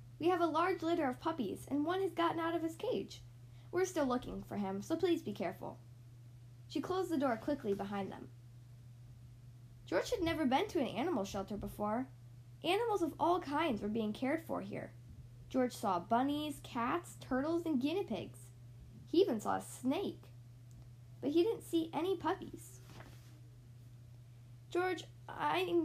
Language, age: English, 10-29